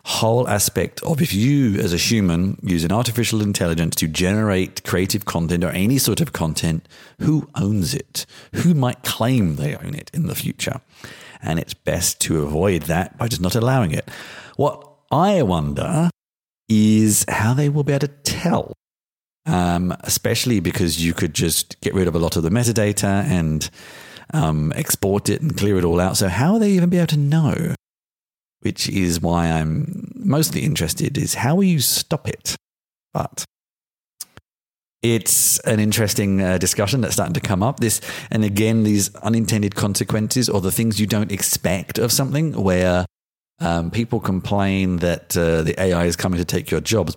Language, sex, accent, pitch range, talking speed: English, male, British, 90-120 Hz, 175 wpm